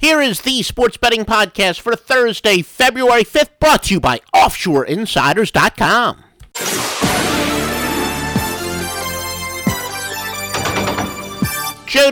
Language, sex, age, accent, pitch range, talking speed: English, male, 50-69, American, 135-225 Hz, 80 wpm